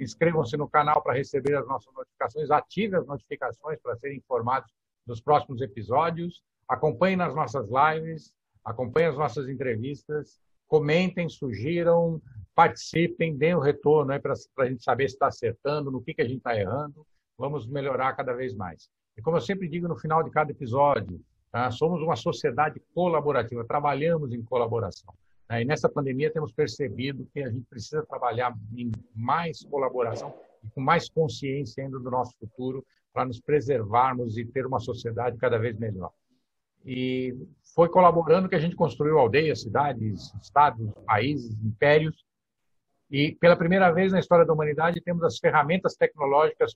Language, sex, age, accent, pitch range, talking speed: Portuguese, male, 60-79, Brazilian, 120-155 Hz, 155 wpm